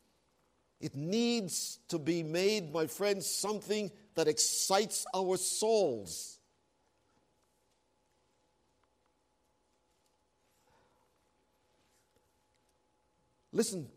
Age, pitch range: 60-79, 130-170 Hz